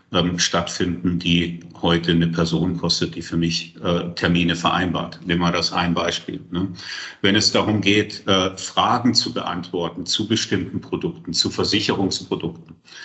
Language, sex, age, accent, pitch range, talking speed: German, male, 50-69, German, 90-115 Hz, 145 wpm